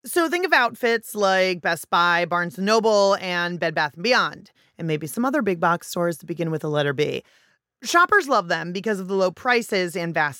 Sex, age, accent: female, 30-49, American